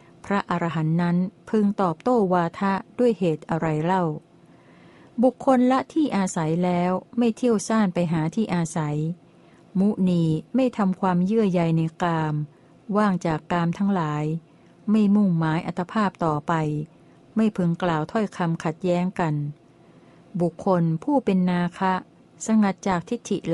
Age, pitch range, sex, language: 60-79, 165-205 Hz, female, Thai